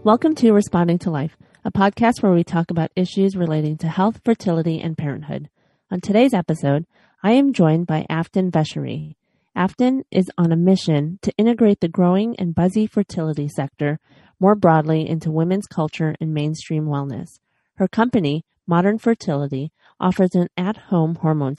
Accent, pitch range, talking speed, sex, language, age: American, 155-195 Hz, 155 wpm, female, English, 30-49